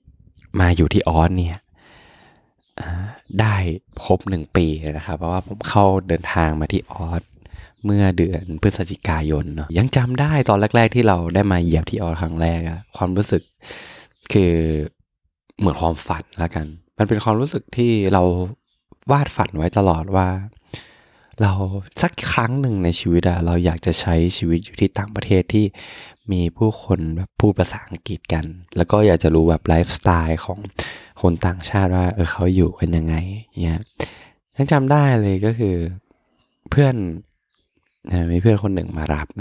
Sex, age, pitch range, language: male, 20-39, 85-105 Hz, Thai